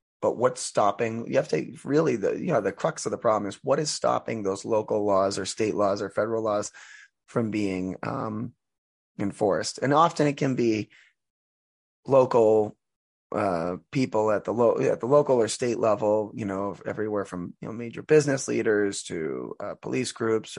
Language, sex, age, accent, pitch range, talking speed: English, male, 20-39, American, 100-115 Hz, 180 wpm